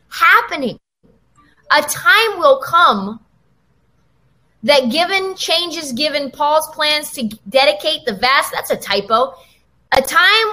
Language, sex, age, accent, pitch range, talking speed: English, female, 20-39, American, 235-360 Hz, 115 wpm